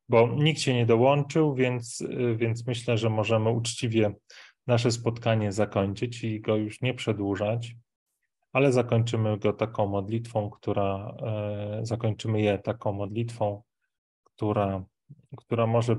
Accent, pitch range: native, 105-115 Hz